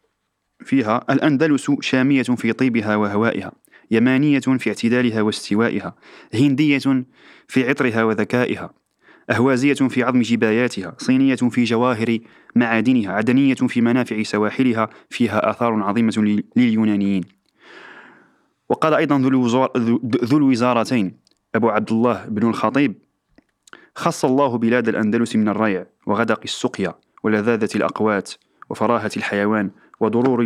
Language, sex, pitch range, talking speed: Arabic, male, 110-130 Hz, 100 wpm